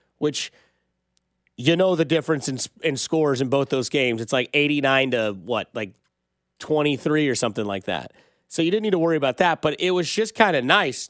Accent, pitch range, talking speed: American, 140-190 Hz, 205 wpm